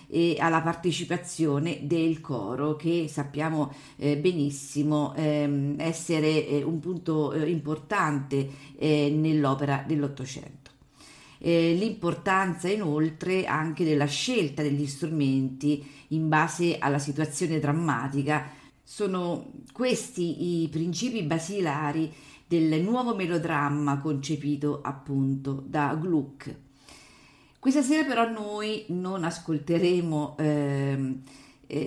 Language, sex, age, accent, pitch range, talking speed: Italian, female, 40-59, native, 145-175 Hz, 85 wpm